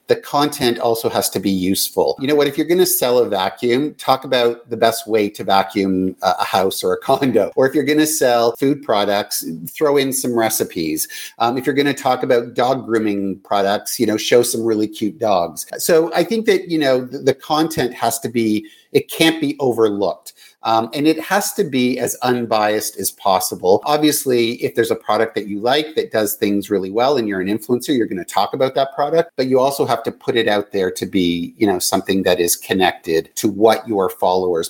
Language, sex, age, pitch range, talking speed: English, male, 50-69, 100-140 Hz, 225 wpm